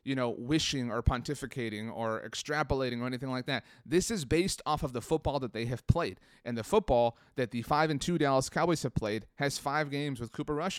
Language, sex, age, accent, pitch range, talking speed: English, male, 30-49, American, 115-140 Hz, 220 wpm